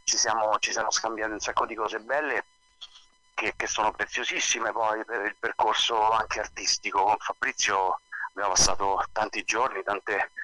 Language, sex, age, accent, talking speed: Italian, male, 40-59, native, 155 wpm